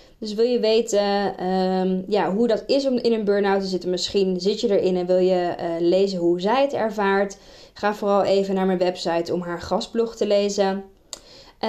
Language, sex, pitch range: Dutch, female, 190-220 Hz